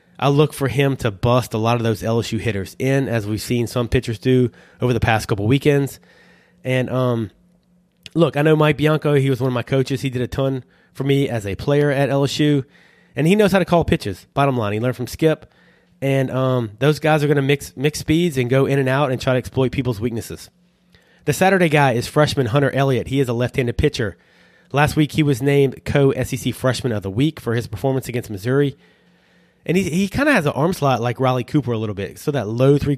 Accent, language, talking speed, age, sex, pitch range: American, English, 230 wpm, 30-49, male, 120-150 Hz